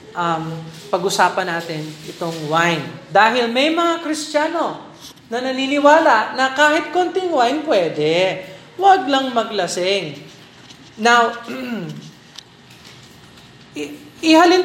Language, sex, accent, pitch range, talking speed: Filipino, male, native, 185-275 Hz, 85 wpm